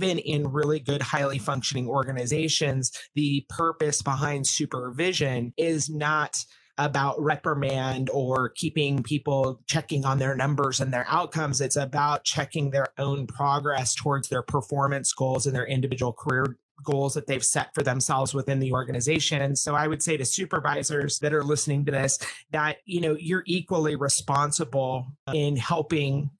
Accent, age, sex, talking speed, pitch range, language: American, 30-49, male, 150 wpm, 135-150 Hz, English